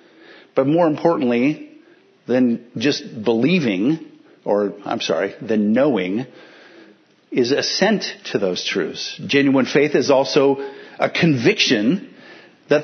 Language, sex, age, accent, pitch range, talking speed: English, male, 50-69, American, 130-180 Hz, 110 wpm